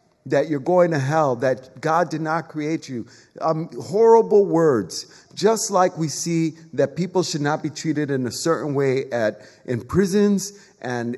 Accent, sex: American, male